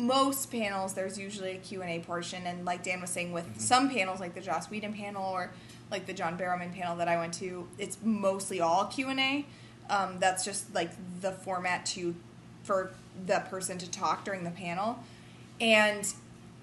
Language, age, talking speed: English, 20-39, 180 wpm